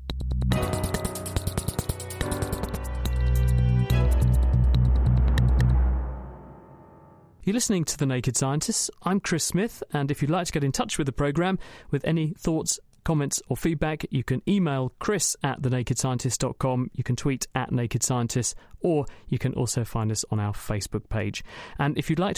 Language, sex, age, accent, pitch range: English, male, 30-49, British, 110-160 Hz